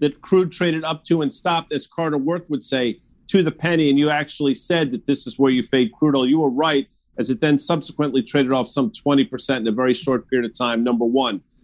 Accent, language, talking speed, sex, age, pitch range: American, English, 245 wpm, male, 50-69, 135-165 Hz